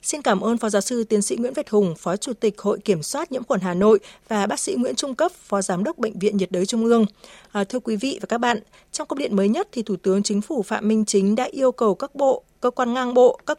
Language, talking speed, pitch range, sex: Vietnamese, 290 wpm, 205-265 Hz, female